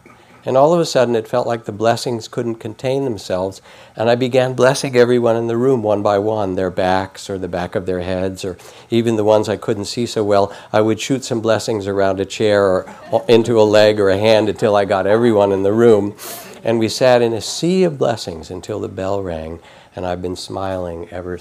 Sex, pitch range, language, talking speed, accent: male, 95-120 Hz, English, 225 wpm, American